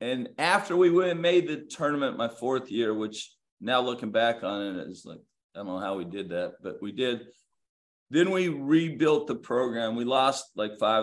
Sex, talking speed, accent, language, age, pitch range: male, 205 wpm, American, English, 40-59, 105-135 Hz